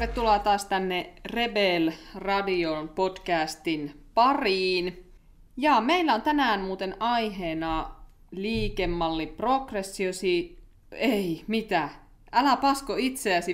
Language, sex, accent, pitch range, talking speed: Finnish, female, native, 175-235 Hz, 85 wpm